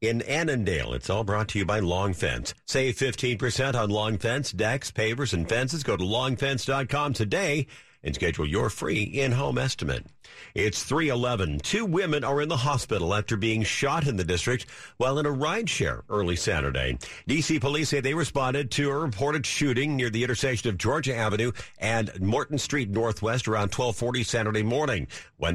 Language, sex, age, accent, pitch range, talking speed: English, male, 50-69, American, 95-130 Hz, 170 wpm